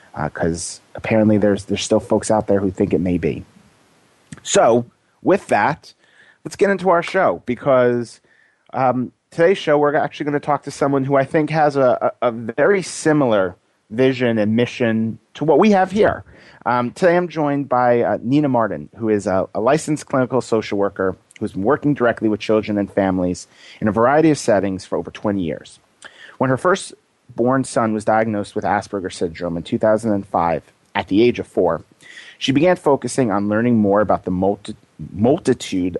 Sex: male